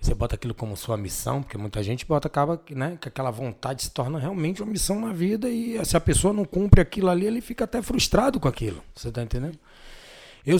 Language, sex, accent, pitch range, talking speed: Portuguese, male, Brazilian, 115-165 Hz, 225 wpm